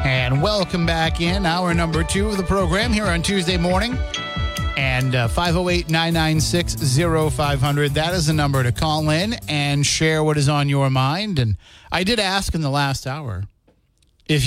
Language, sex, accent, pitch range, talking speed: English, male, American, 115-160 Hz, 165 wpm